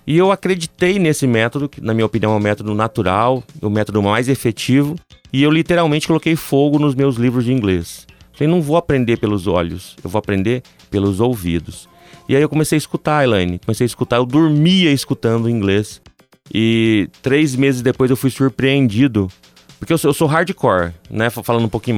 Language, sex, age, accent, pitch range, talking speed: Portuguese, male, 30-49, Brazilian, 105-145 Hz, 185 wpm